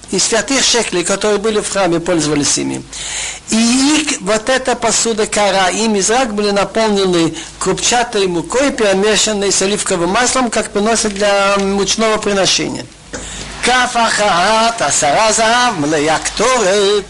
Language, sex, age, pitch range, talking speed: Russian, male, 50-69, 190-240 Hz, 105 wpm